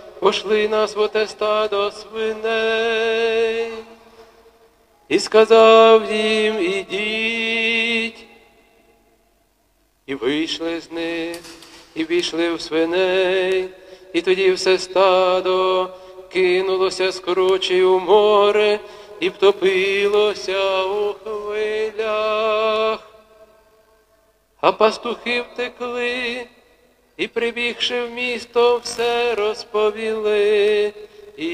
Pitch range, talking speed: 205-235 Hz, 75 wpm